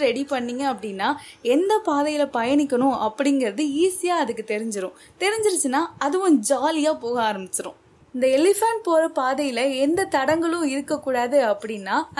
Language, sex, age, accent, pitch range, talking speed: Tamil, female, 20-39, native, 230-300 Hz, 115 wpm